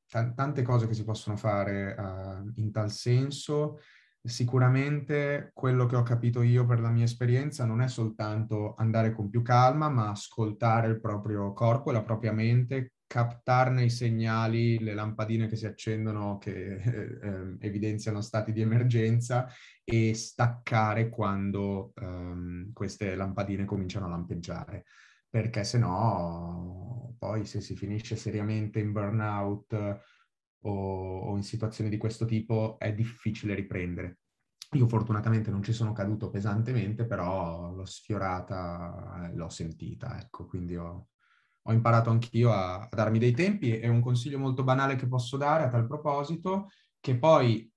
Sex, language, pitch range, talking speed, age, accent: male, Italian, 100-120 Hz, 140 wpm, 20-39, native